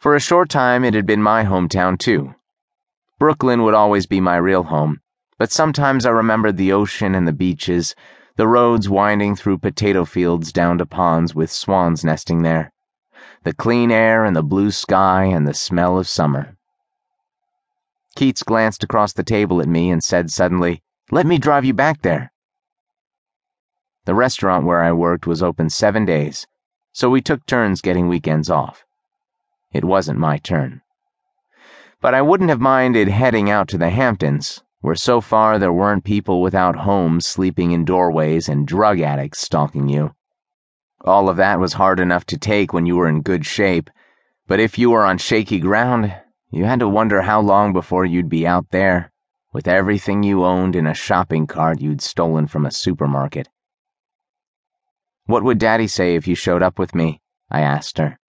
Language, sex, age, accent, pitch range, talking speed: English, male, 30-49, American, 85-120 Hz, 175 wpm